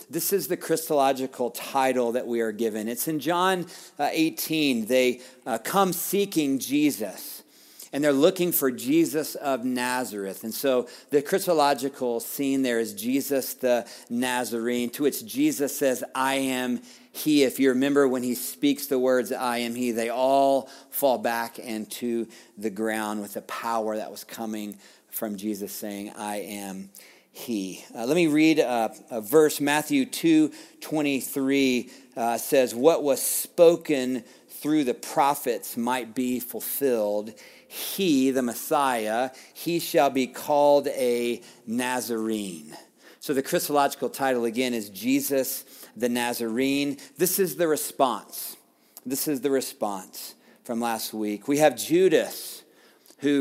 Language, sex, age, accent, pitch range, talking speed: English, male, 40-59, American, 120-150 Hz, 140 wpm